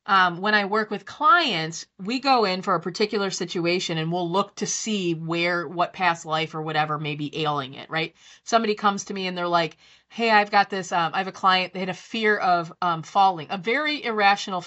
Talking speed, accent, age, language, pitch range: 225 wpm, American, 20-39, English, 175-215 Hz